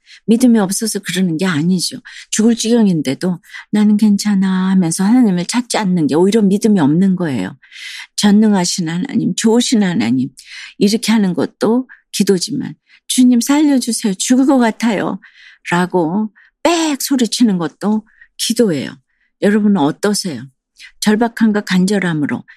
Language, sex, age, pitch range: Korean, female, 50-69, 175-215 Hz